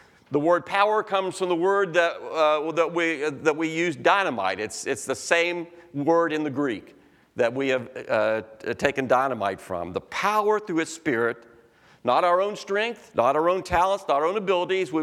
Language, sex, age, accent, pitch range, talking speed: English, male, 50-69, American, 150-195 Hz, 195 wpm